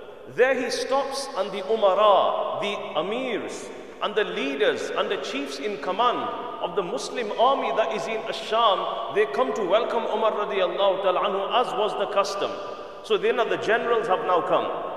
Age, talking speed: 50-69, 175 wpm